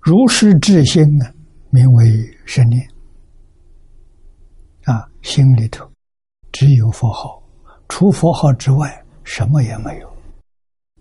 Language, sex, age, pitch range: Chinese, male, 60-79, 85-125 Hz